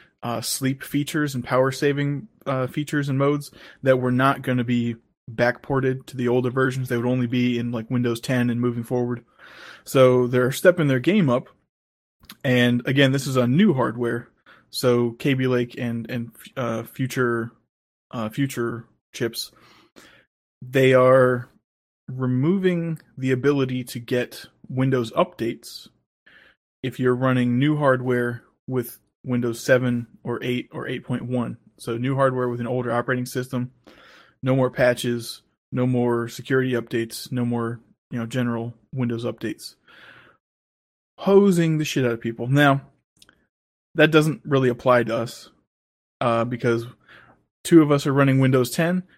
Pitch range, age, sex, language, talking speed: 120-130 Hz, 20-39, male, English, 145 wpm